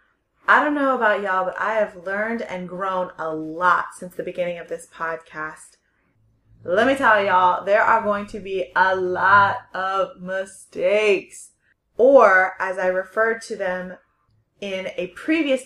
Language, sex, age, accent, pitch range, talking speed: English, female, 20-39, American, 185-235 Hz, 155 wpm